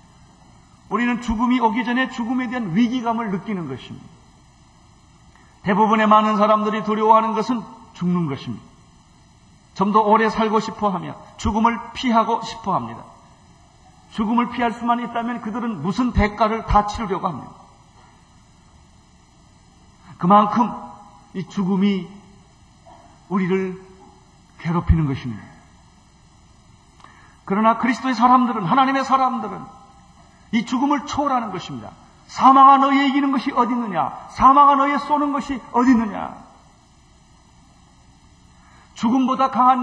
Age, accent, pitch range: 40-59, native, 195-260 Hz